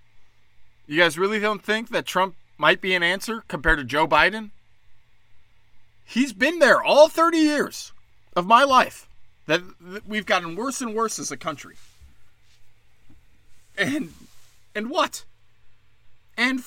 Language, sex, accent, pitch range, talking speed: English, male, American, 110-150 Hz, 135 wpm